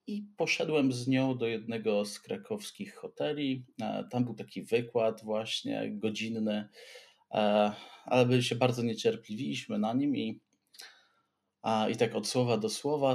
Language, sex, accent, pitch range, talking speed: Polish, male, native, 105-175 Hz, 130 wpm